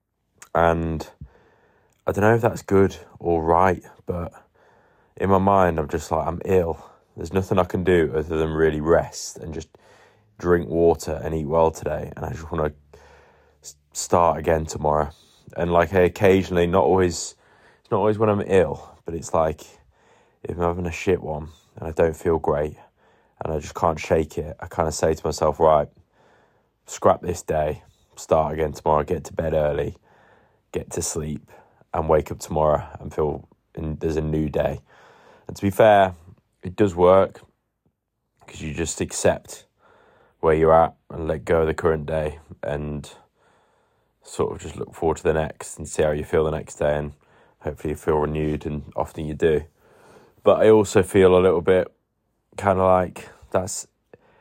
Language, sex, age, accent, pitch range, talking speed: English, male, 20-39, British, 80-95 Hz, 180 wpm